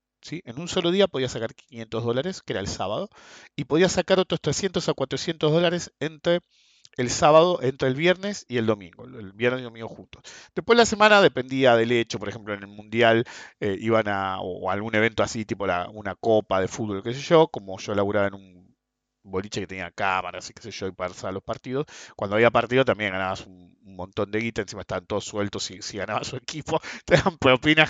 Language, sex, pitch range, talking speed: English, male, 110-160 Hz, 220 wpm